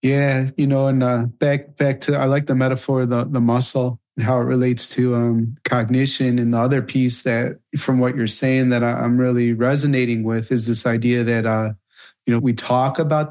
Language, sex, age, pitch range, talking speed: English, male, 30-49, 120-140 Hz, 210 wpm